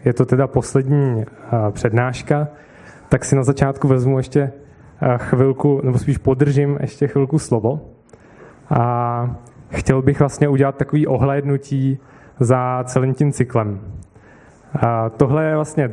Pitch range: 120-140 Hz